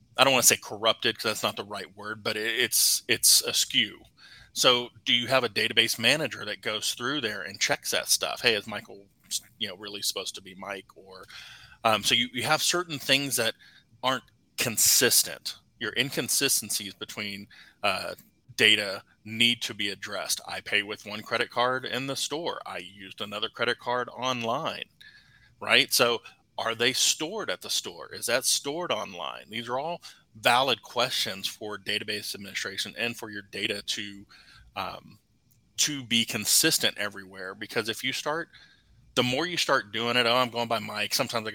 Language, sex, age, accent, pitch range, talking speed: English, male, 30-49, American, 105-125 Hz, 180 wpm